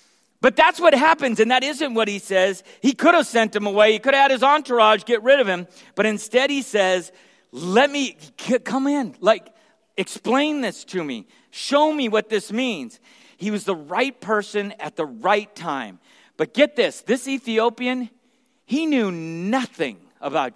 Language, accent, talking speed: English, American, 180 wpm